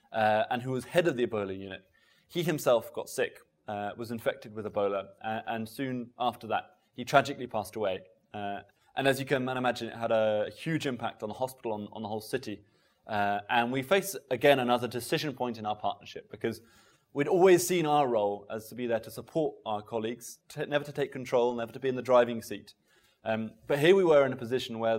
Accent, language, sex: British, English, male